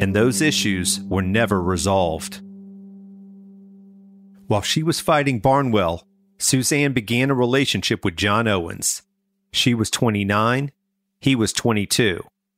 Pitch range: 100-135 Hz